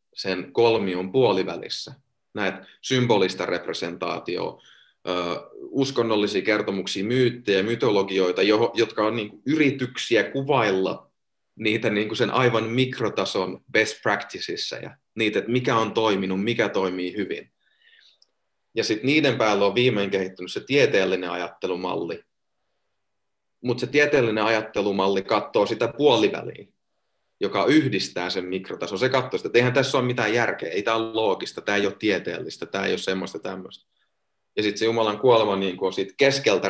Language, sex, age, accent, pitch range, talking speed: Finnish, male, 30-49, native, 95-120 Hz, 140 wpm